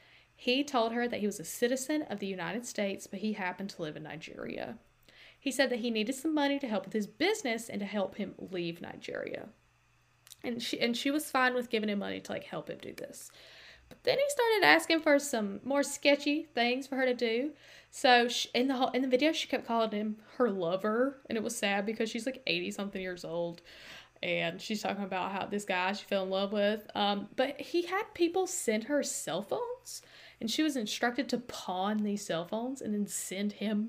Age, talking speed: 10-29, 225 wpm